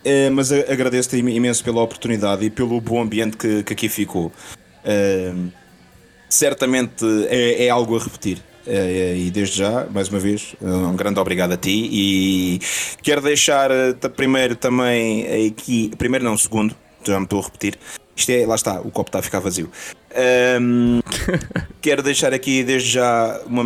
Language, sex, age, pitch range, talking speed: Portuguese, male, 20-39, 105-125 Hz, 155 wpm